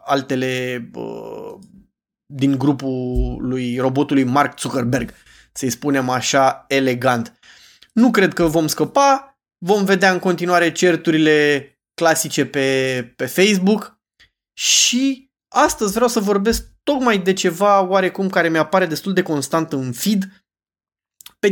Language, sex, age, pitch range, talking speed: Romanian, male, 20-39, 135-190 Hz, 120 wpm